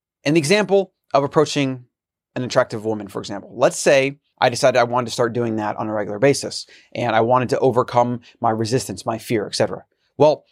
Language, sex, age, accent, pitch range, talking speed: English, male, 30-49, American, 120-150 Hz, 200 wpm